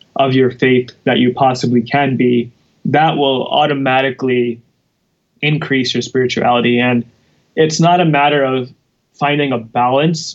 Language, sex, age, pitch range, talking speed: English, male, 20-39, 125-140 Hz, 135 wpm